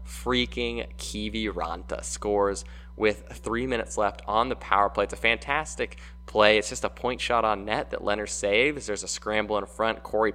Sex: male